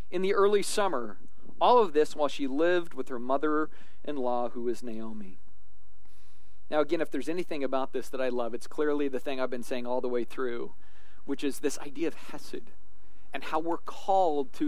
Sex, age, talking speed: male, 40-59, 195 wpm